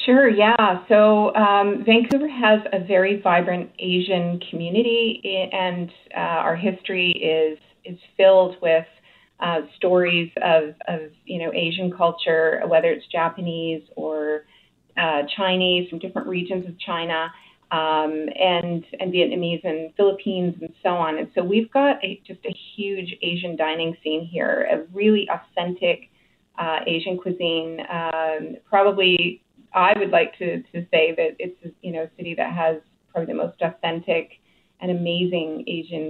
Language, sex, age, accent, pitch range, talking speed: English, female, 30-49, American, 165-195 Hz, 150 wpm